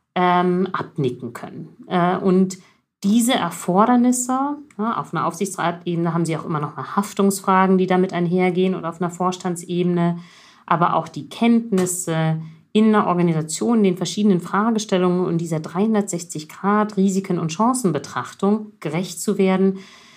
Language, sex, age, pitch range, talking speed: German, female, 50-69, 175-215 Hz, 125 wpm